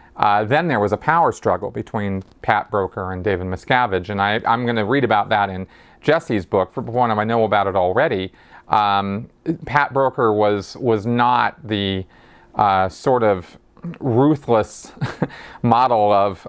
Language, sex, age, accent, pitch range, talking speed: English, male, 40-59, American, 95-120 Hz, 165 wpm